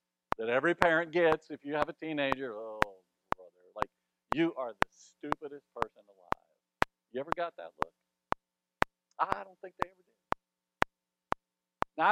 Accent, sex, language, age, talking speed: American, male, English, 50-69, 150 wpm